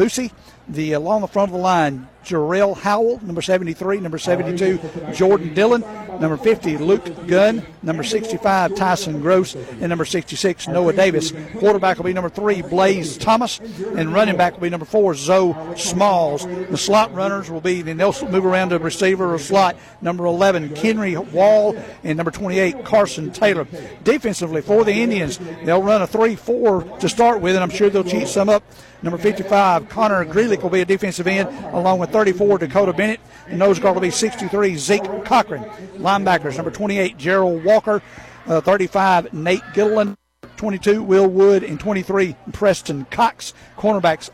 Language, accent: English, American